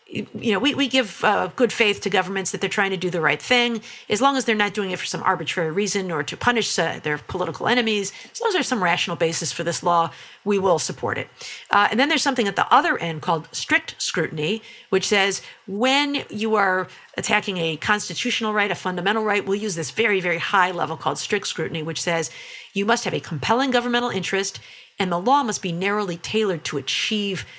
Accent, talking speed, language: American, 220 wpm, English